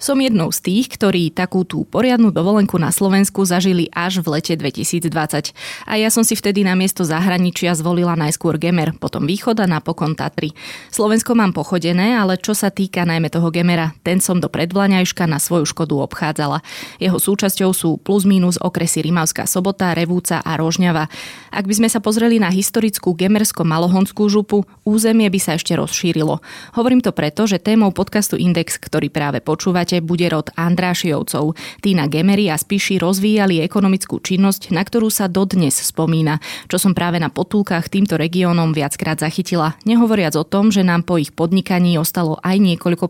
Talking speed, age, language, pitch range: 170 wpm, 20-39, Slovak, 160-195 Hz